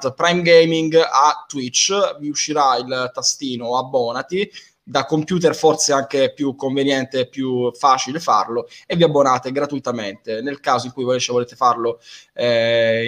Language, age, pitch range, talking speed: Italian, 20-39, 130-165 Hz, 140 wpm